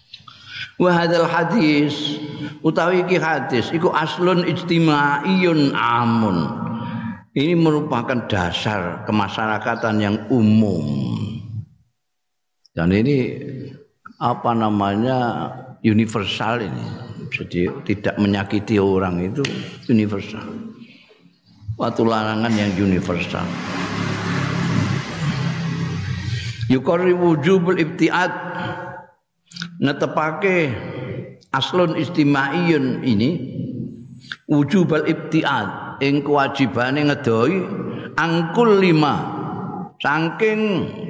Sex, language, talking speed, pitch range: male, Indonesian, 65 wpm, 110-160 Hz